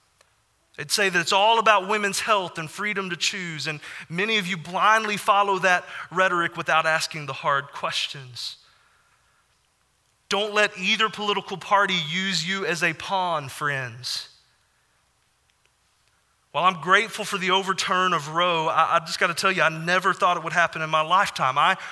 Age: 30-49